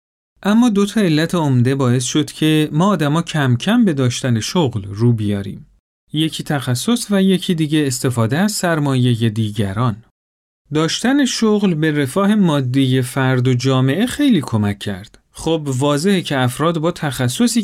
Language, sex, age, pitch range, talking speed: Persian, male, 40-59, 125-185 Hz, 145 wpm